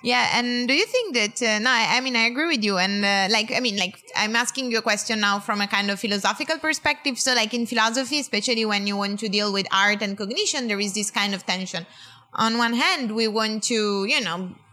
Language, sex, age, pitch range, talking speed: English, female, 20-39, 190-225 Hz, 250 wpm